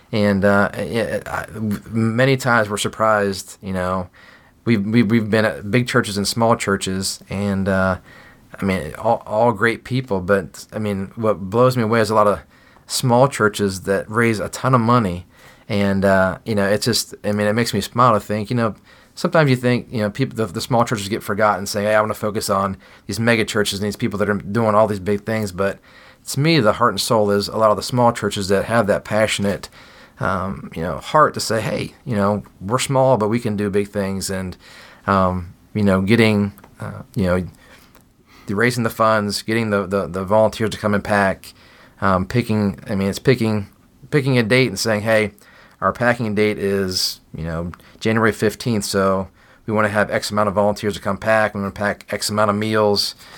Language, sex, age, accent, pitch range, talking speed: English, male, 30-49, American, 100-115 Hz, 215 wpm